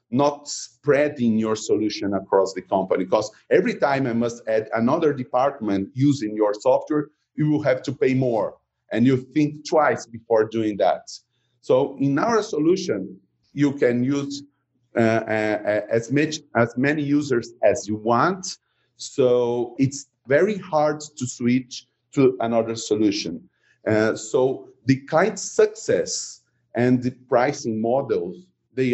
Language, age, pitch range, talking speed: English, 40-59, 115-150 Hz, 140 wpm